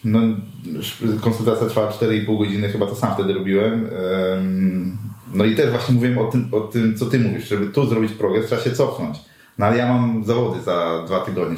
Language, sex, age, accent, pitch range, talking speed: Polish, male, 30-49, native, 110-130 Hz, 195 wpm